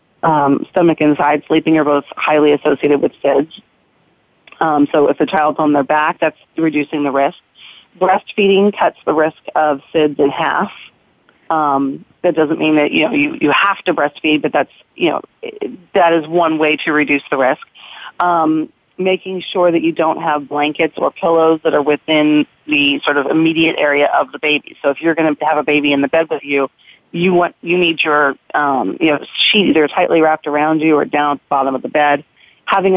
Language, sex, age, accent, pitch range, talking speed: English, female, 40-59, American, 150-180 Hz, 205 wpm